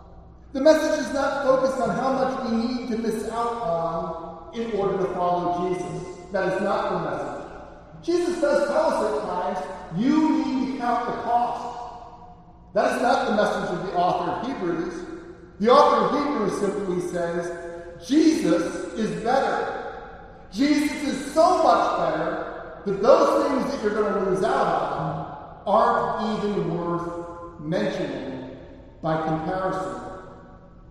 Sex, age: male, 40-59